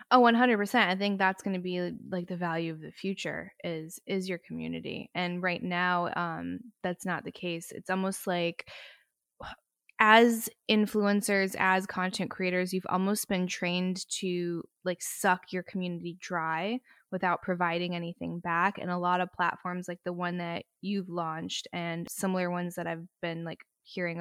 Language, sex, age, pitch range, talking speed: English, female, 10-29, 170-190 Hz, 165 wpm